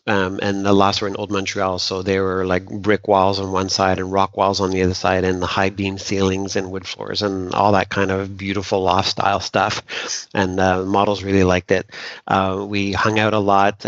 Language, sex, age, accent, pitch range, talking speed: English, male, 40-59, American, 95-105 Hz, 235 wpm